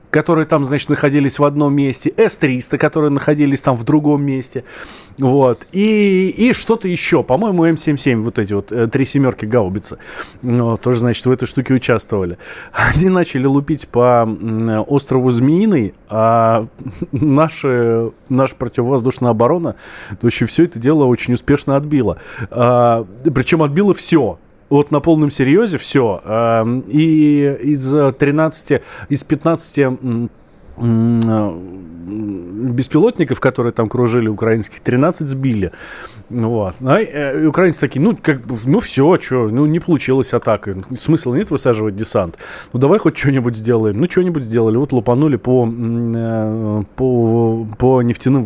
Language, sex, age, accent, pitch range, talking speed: Russian, male, 20-39, native, 115-145 Hz, 130 wpm